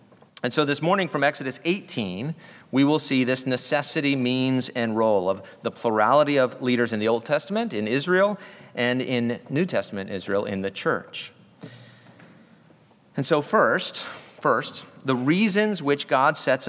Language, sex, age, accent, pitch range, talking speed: English, male, 40-59, American, 125-165 Hz, 155 wpm